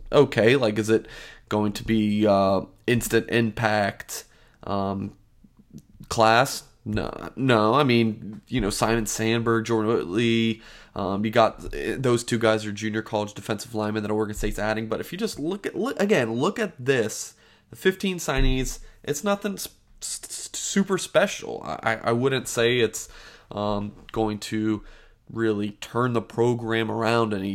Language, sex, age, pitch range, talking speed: English, male, 20-39, 105-150 Hz, 150 wpm